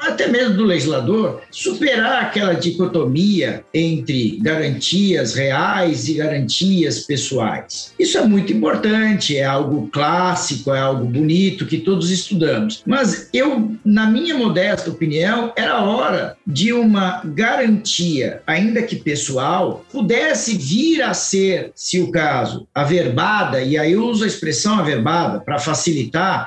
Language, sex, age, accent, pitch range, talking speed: Portuguese, male, 50-69, Brazilian, 165-235 Hz, 130 wpm